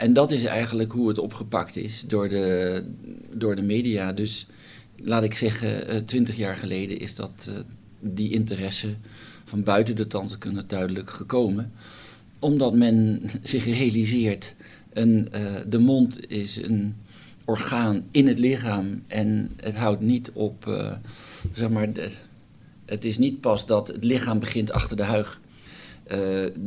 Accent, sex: Dutch, male